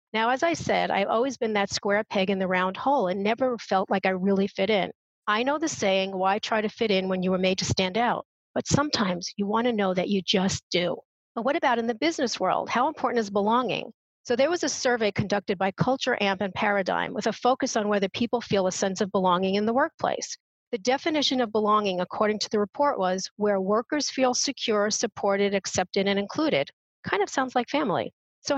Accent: American